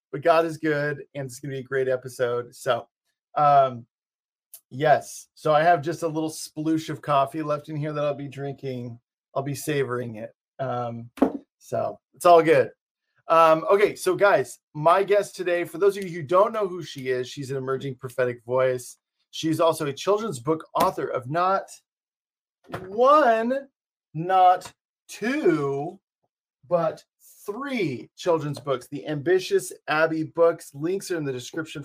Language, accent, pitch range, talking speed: English, American, 130-170 Hz, 160 wpm